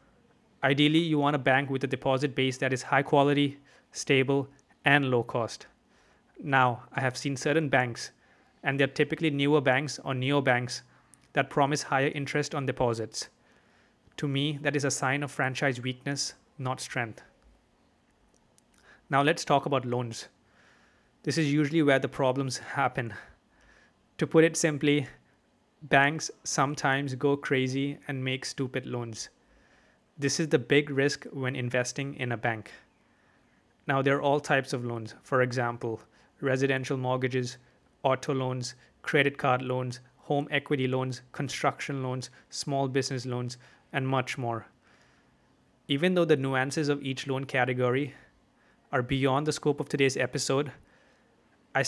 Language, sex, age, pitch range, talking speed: English, male, 30-49, 130-145 Hz, 145 wpm